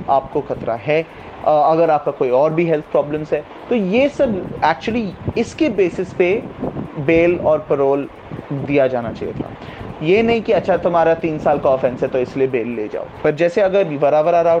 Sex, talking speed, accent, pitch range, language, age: male, 185 wpm, native, 150-215 Hz, Hindi, 30-49